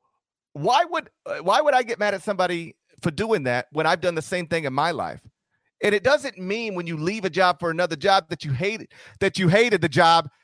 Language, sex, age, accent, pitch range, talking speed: English, male, 40-59, American, 145-220 Hz, 235 wpm